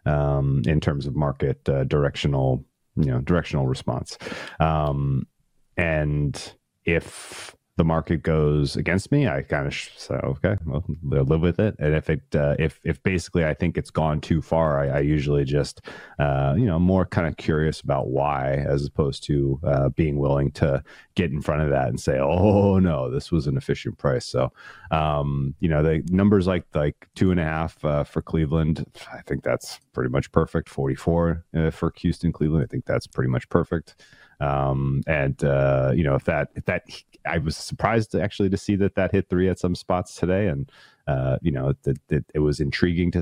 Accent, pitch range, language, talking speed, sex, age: American, 70-85 Hz, English, 200 wpm, male, 30-49